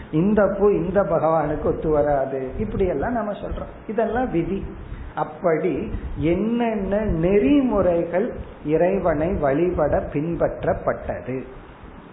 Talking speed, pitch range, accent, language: 70 wpm, 140-185 Hz, native, Tamil